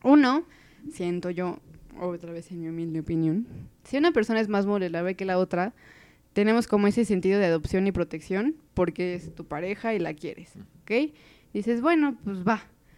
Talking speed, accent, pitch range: 175 wpm, Mexican, 180-230 Hz